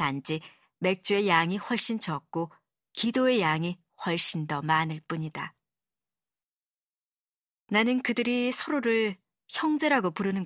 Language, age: Korean, 40-59